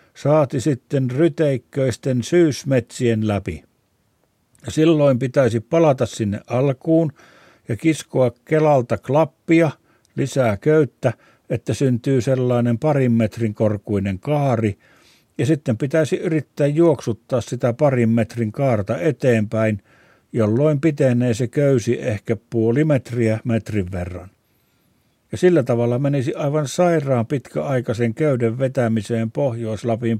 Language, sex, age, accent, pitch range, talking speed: Finnish, male, 60-79, native, 115-145 Hz, 105 wpm